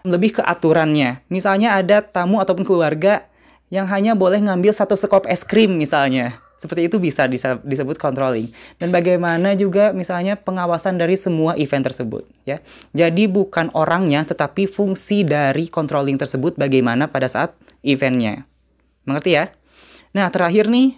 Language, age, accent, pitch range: Indonesian, 20-39, native, 145-195 Hz